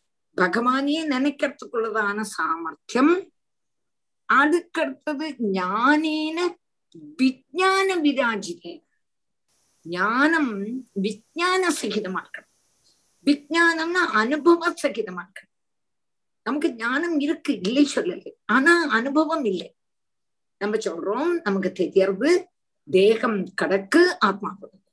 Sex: female